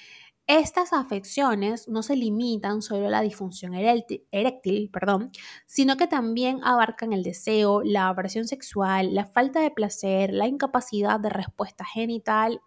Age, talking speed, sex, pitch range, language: 20-39, 135 wpm, female, 195-250 Hz, Spanish